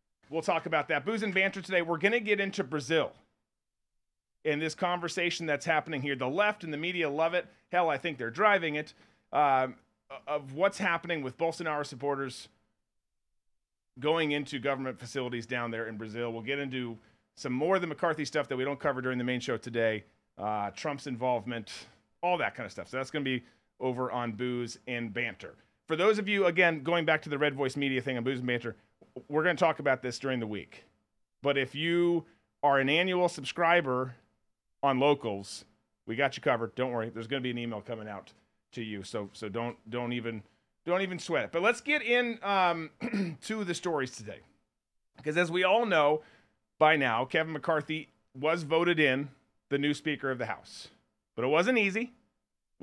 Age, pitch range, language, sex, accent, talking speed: 40-59, 120-170 Hz, English, male, American, 200 wpm